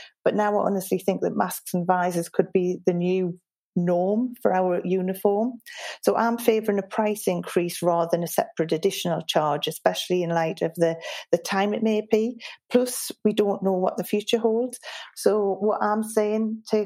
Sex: female